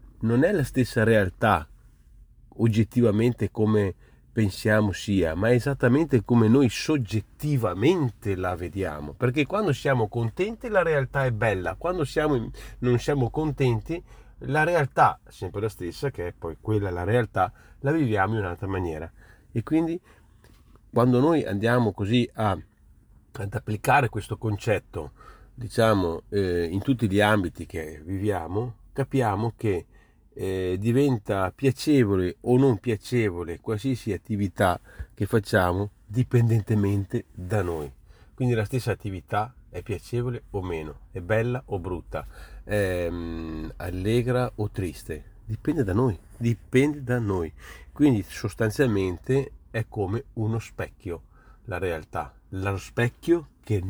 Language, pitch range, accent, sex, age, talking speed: Italian, 95-125 Hz, native, male, 40-59, 125 wpm